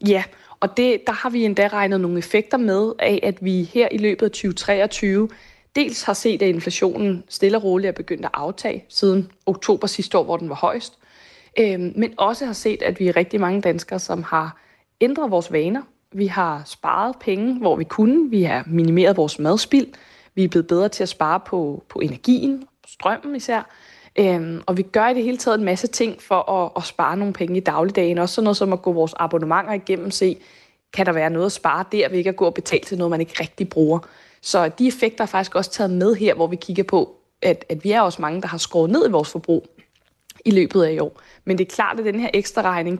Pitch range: 175-215 Hz